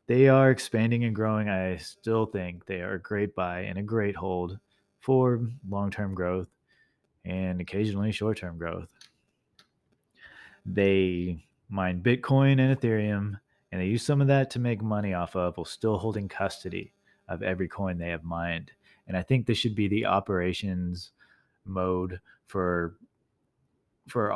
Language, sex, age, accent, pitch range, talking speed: English, male, 30-49, American, 90-105 Hz, 150 wpm